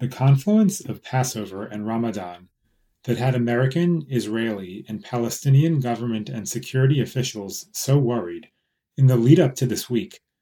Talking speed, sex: 140 wpm, male